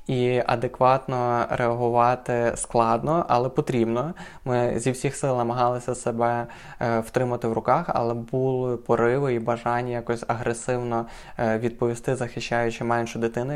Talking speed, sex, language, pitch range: 115 wpm, male, Ukrainian, 120-130 Hz